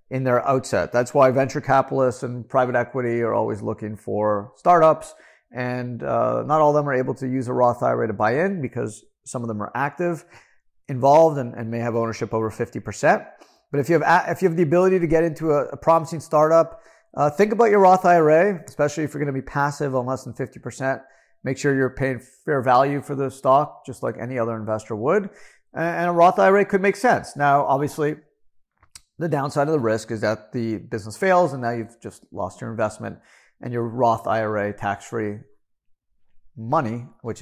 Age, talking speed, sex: 40-59, 205 wpm, male